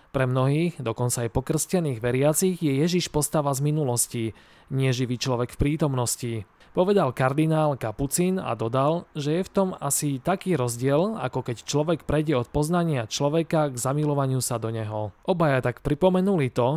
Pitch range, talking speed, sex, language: 125-160 Hz, 155 wpm, male, Slovak